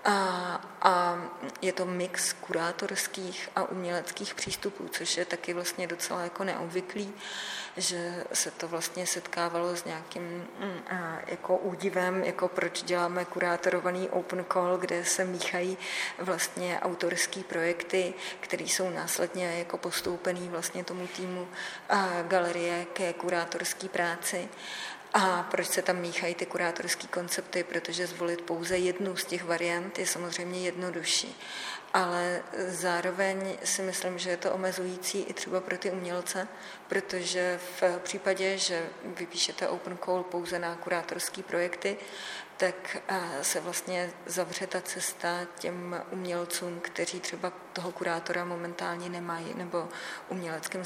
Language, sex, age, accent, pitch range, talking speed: Czech, female, 20-39, native, 175-190 Hz, 130 wpm